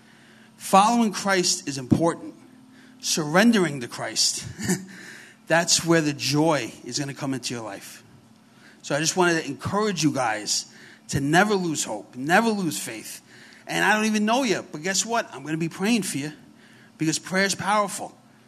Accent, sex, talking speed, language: American, male, 170 wpm, English